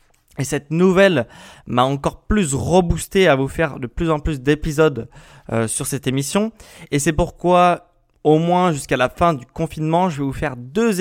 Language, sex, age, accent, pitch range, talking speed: French, male, 20-39, French, 135-175 Hz, 185 wpm